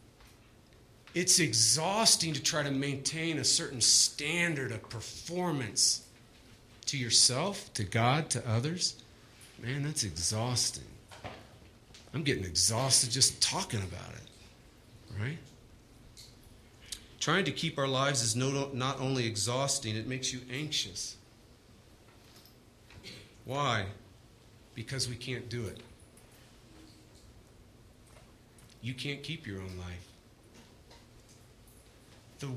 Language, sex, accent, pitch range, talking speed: English, male, American, 110-125 Hz, 100 wpm